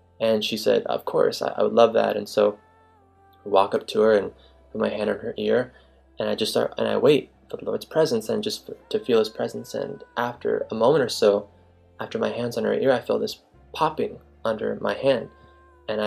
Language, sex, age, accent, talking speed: English, male, 20-39, American, 225 wpm